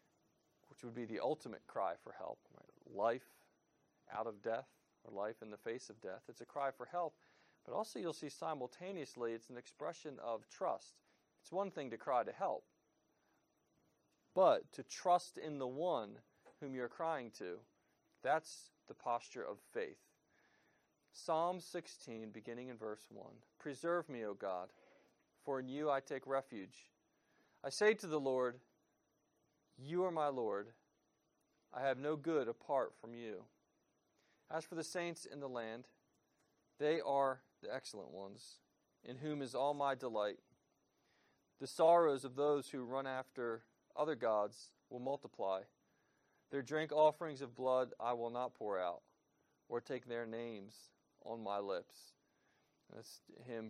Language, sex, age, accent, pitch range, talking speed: English, male, 40-59, American, 115-150 Hz, 155 wpm